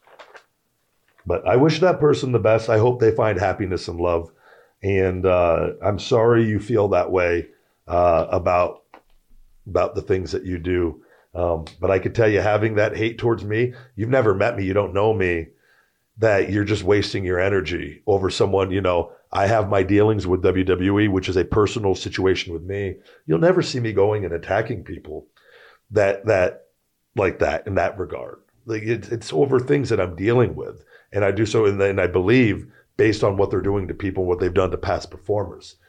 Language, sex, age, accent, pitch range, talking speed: English, male, 40-59, American, 90-110 Hz, 195 wpm